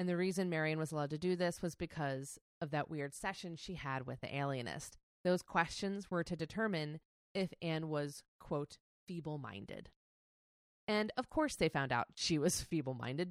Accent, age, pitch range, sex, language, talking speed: American, 30-49, 140-180 Hz, female, English, 175 wpm